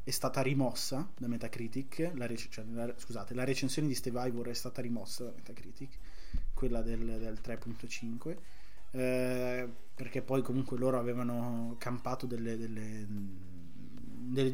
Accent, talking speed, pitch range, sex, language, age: native, 135 wpm, 120-140 Hz, male, Italian, 20-39